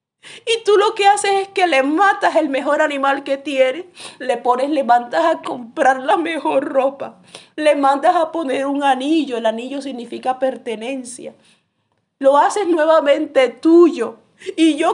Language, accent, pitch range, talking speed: English, Venezuelan, 245-340 Hz, 155 wpm